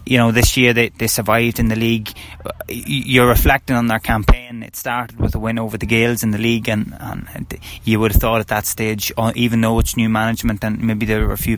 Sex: male